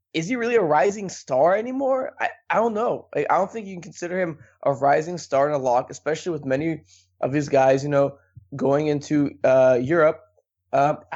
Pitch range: 130-175 Hz